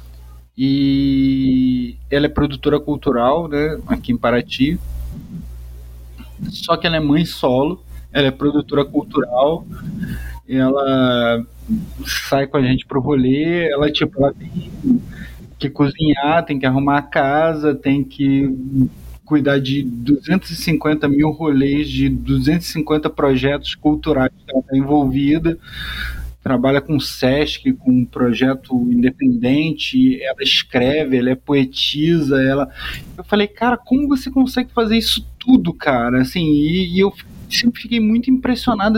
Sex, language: male, Portuguese